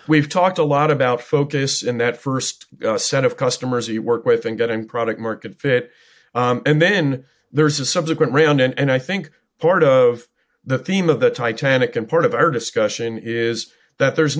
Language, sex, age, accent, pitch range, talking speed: English, male, 40-59, American, 120-160 Hz, 200 wpm